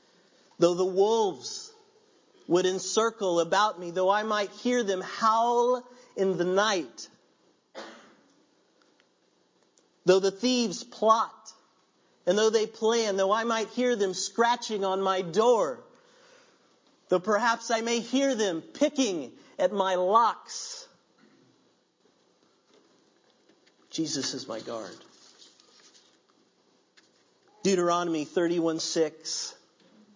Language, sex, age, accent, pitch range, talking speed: English, male, 50-69, American, 155-225 Hz, 100 wpm